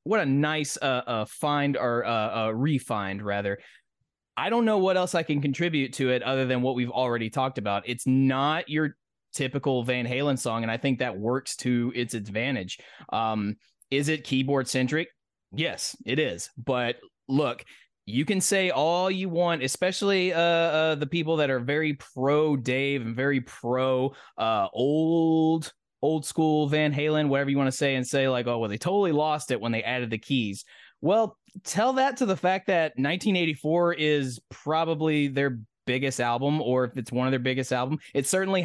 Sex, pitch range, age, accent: male, 125-155 Hz, 20-39, American